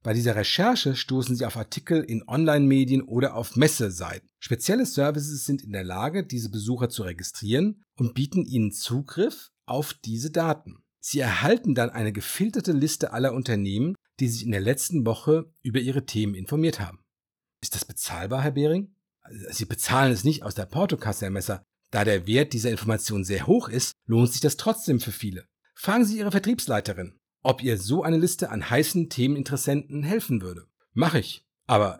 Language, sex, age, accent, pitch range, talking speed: German, male, 50-69, German, 105-145 Hz, 175 wpm